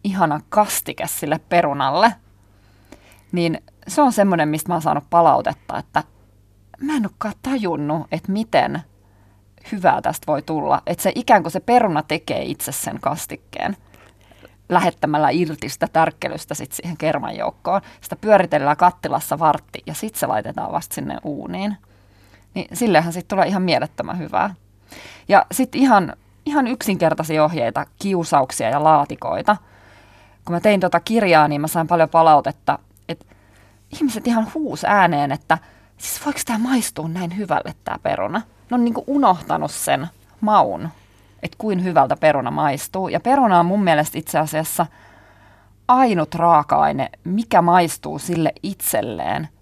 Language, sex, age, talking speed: Finnish, female, 30-49, 140 wpm